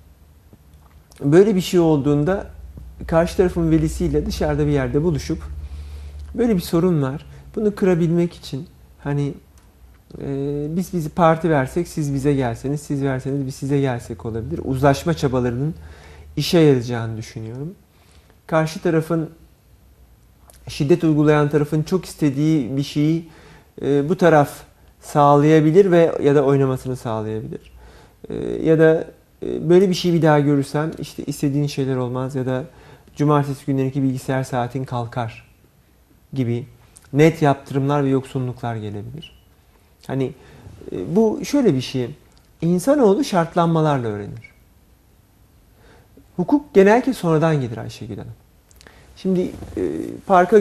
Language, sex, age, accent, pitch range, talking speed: Turkish, male, 40-59, native, 120-165 Hz, 115 wpm